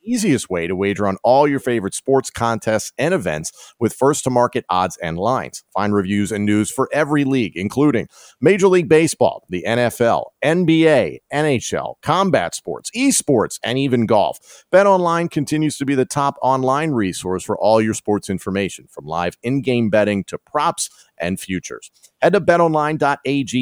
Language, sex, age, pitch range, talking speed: English, male, 40-59, 100-145 Hz, 165 wpm